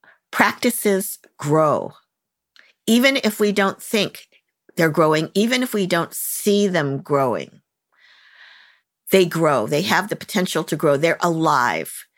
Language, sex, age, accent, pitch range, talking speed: English, female, 50-69, American, 160-200 Hz, 130 wpm